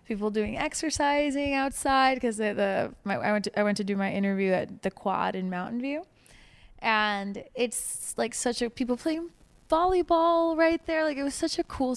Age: 20-39